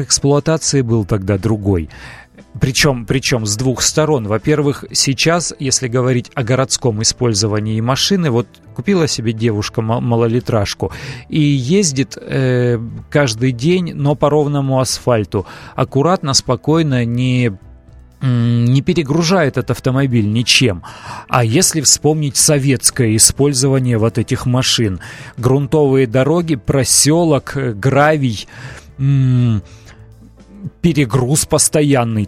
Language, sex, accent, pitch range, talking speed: Russian, male, native, 110-140 Hz, 100 wpm